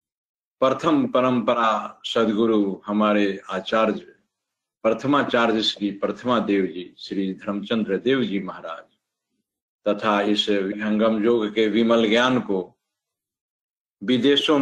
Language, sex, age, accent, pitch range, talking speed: Hindi, male, 50-69, native, 105-130 Hz, 100 wpm